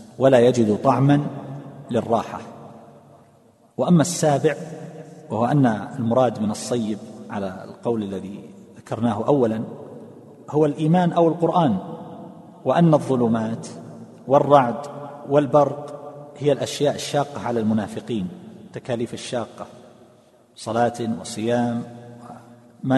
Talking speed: 90 wpm